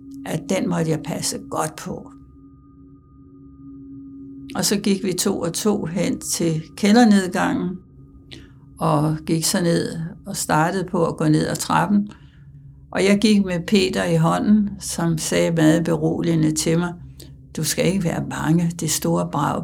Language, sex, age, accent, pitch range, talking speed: Danish, female, 60-79, native, 130-175 Hz, 155 wpm